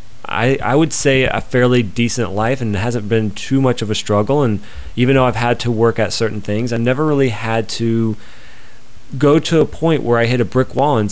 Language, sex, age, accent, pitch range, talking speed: English, male, 30-49, American, 100-120 Hz, 230 wpm